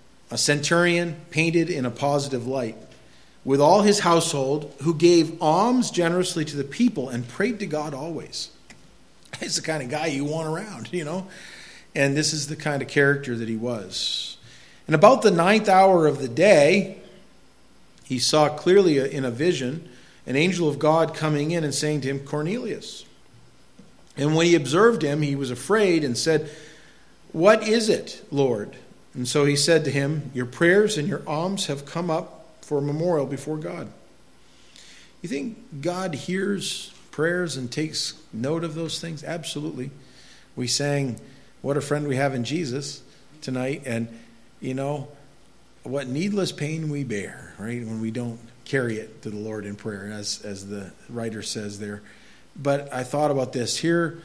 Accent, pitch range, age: American, 125-165 Hz, 40-59